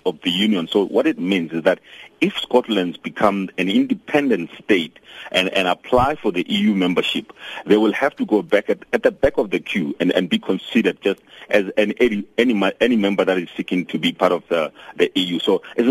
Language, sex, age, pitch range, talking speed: English, male, 50-69, 90-105 Hz, 220 wpm